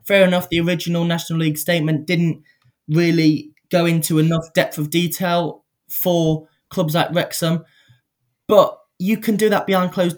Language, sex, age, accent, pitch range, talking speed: English, male, 10-29, British, 150-180 Hz, 155 wpm